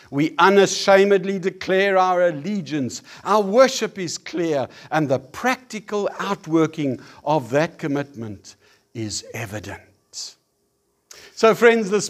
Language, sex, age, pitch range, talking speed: English, male, 60-79, 115-175 Hz, 105 wpm